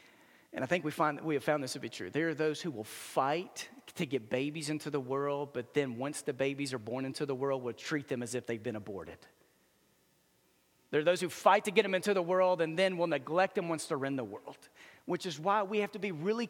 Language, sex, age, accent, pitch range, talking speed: English, male, 40-59, American, 125-170 Hz, 260 wpm